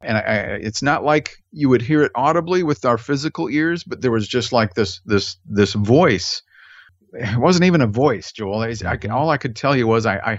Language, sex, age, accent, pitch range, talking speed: English, male, 50-69, American, 100-120 Hz, 235 wpm